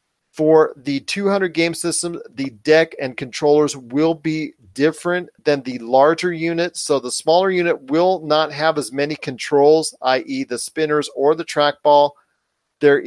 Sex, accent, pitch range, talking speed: male, American, 145-170 Hz, 150 wpm